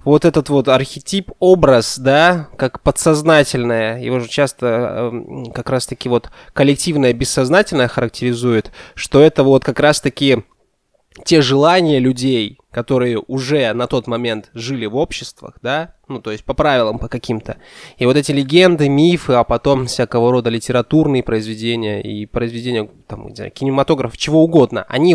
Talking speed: 140 wpm